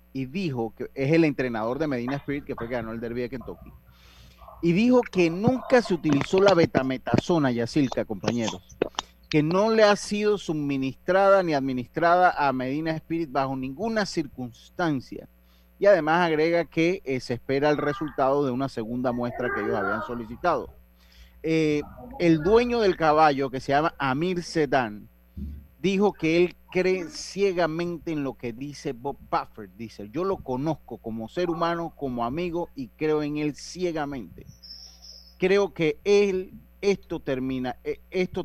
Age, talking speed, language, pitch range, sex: 30-49, 155 wpm, Spanish, 120-170 Hz, male